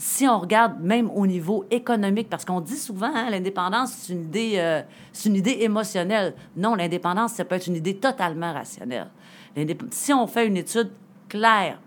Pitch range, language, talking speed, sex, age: 170-220 Hz, French, 190 wpm, female, 40-59